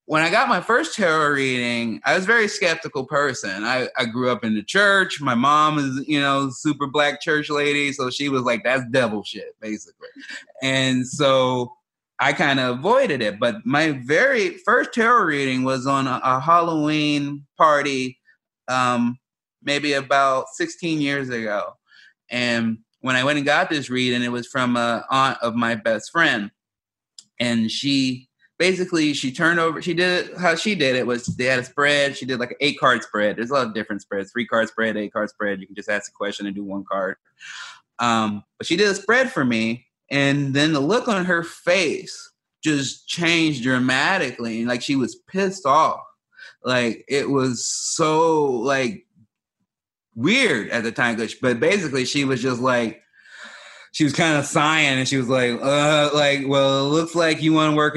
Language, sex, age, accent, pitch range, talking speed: English, male, 30-49, American, 125-150 Hz, 190 wpm